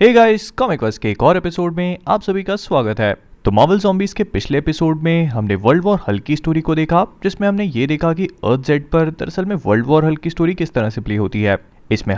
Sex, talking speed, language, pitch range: male, 235 wpm, Hindi, 110-175 Hz